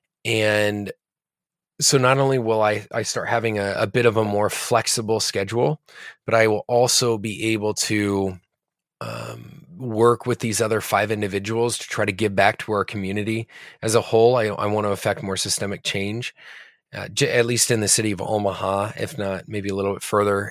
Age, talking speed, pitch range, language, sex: 20-39, 195 wpm, 100-120 Hz, English, male